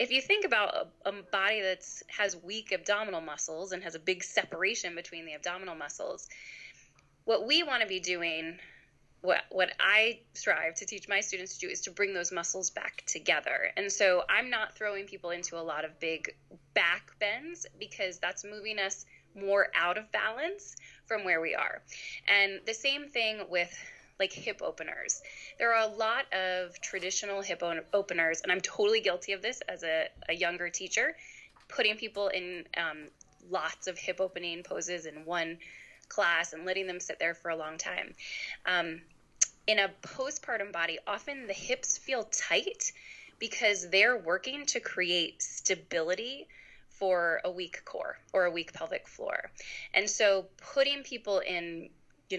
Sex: female